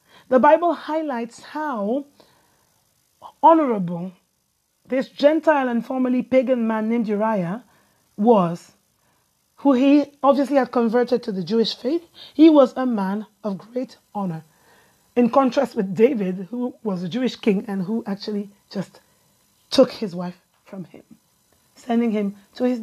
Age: 30-49